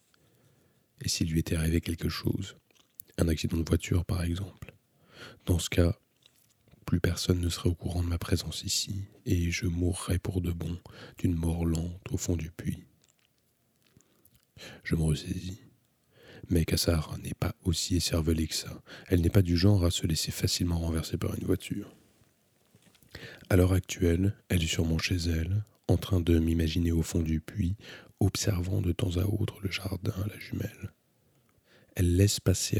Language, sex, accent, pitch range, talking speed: French, male, French, 85-100 Hz, 165 wpm